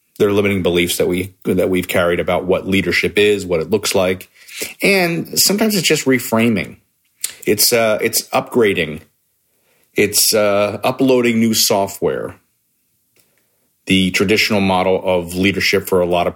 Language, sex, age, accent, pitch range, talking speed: English, male, 40-59, American, 90-110 Hz, 145 wpm